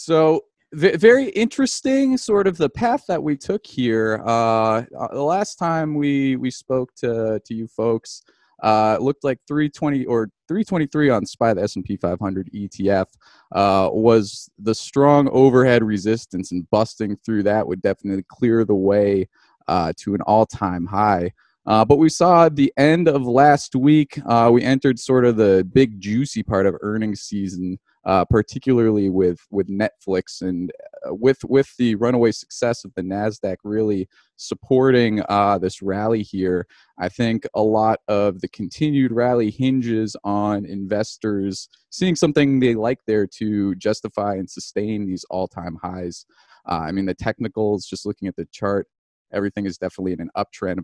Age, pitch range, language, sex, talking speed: 20-39, 100-130 Hz, English, male, 160 wpm